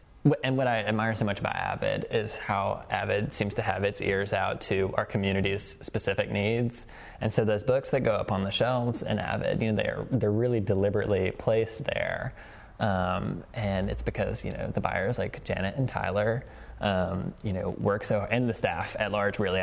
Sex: male